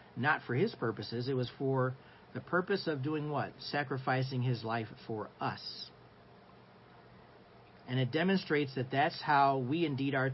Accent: American